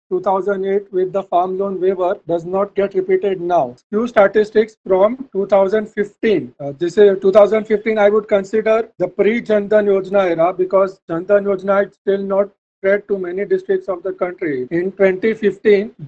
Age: 40-59